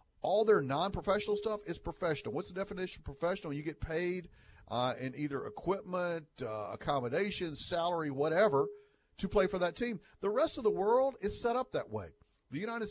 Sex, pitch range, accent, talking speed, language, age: male, 140-210 Hz, American, 180 wpm, English, 40-59